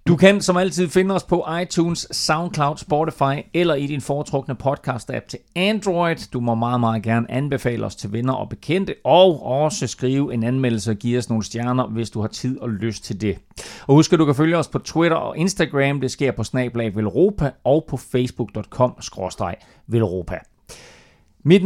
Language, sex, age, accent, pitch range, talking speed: Danish, male, 30-49, native, 110-165 Hz, 185 wpm